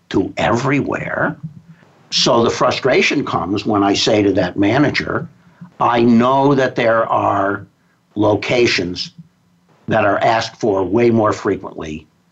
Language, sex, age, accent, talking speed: English, male, 60-79, American, 115 wpm